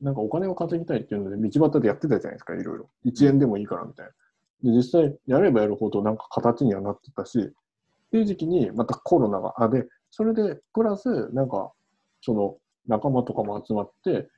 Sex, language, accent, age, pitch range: male, Japanese, native, 20-39, 105-155 Hz